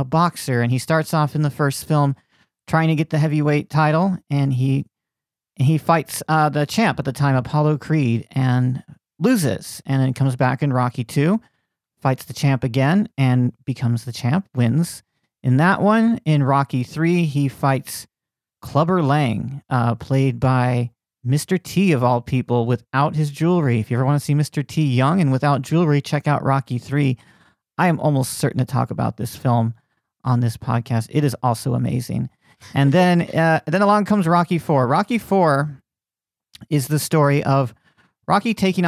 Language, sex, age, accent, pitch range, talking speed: English, male, 40-59, American, 130-155 Hz, 180 wpm